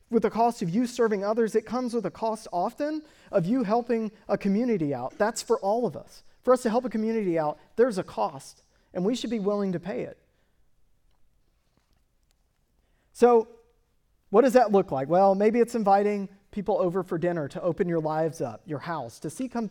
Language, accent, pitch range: English, American, 165-235 Hz